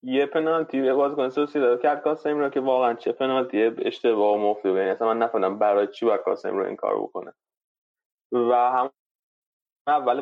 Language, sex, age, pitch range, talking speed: Persian, male, 20-39, 120-155 Hz, 160 wpm